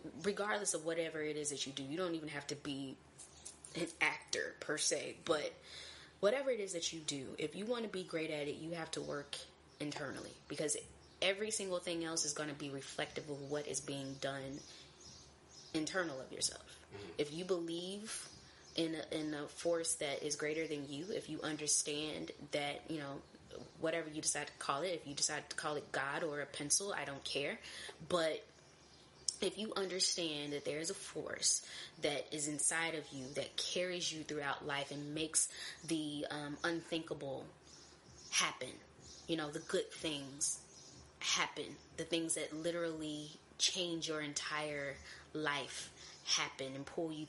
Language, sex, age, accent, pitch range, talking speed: English, female, 20-39, American, 150-170 Hz, 175 wpm